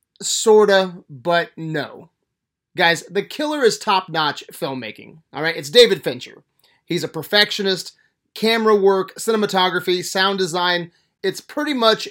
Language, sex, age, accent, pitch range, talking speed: English, male, 30-49, American, 155-190 Hz, 125 wpm